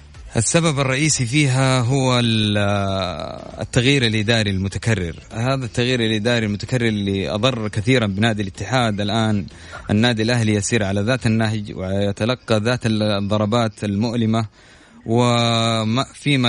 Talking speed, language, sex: 100 wpm, Arabic, male